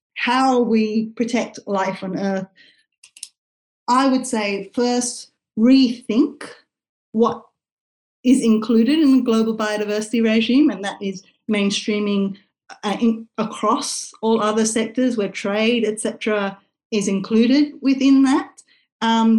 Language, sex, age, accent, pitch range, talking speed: English, female, 30-49, Australian, 210-265 Hz, 115 wpm